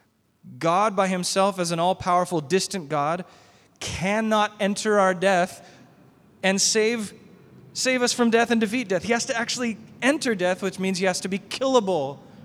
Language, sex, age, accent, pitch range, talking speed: English, male, 30-49, American, 125-190 Hz, 165 wpm